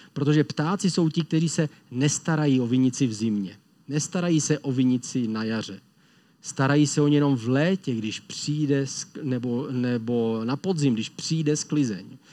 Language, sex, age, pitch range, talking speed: Czech, male, 40-59, 120-155 Hz, 160 wpm